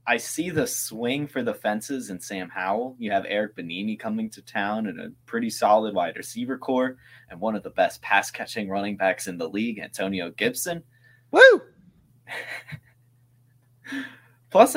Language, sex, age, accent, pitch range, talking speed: English, male, 20-39, American, 115-155 Hz, 160 wpm